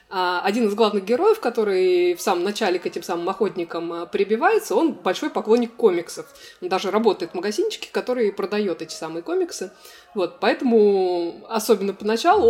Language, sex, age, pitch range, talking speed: Russian, female, 20-39, 195-255 Hz, 150 wpm